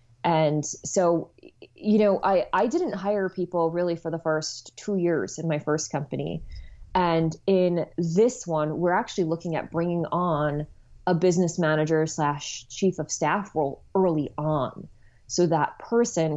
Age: 20-39